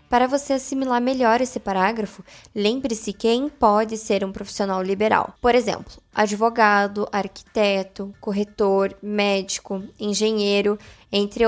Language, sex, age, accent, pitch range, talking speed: Portuguese, female, 10-29, Brazilian, 210-245 Hz, 110 wpm